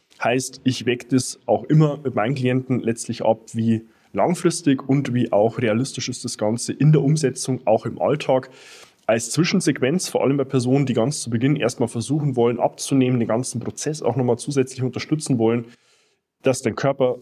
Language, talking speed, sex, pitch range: German, 180 wpm, male, 115-140 Hz